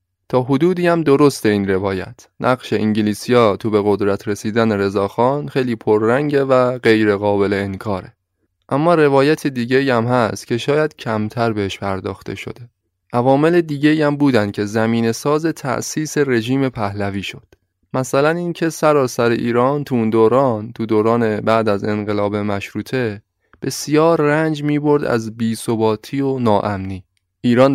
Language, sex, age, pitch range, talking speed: Persian, male, 20-39, 105-130 Hz, 135 wpm